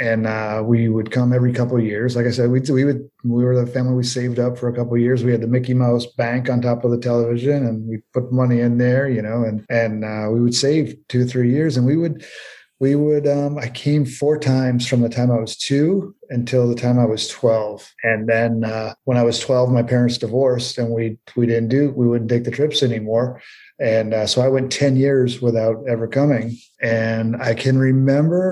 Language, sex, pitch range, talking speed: English, male, 115-135 Hz, 235 wpm